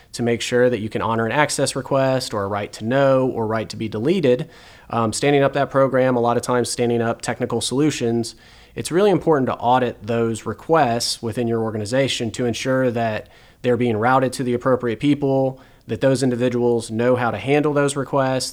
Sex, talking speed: male, 200 wpm